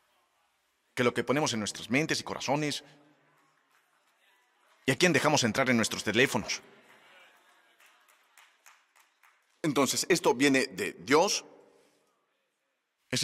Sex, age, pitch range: male, 40-59, 120-175 Hz